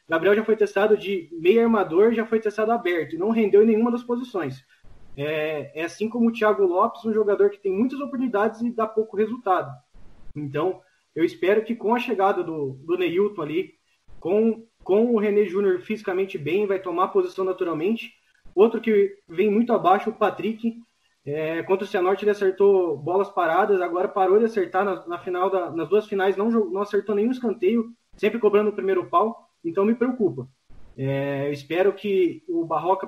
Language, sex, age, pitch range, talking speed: Portuguese, male, 20-39, 185-230 Hz, 185 wpm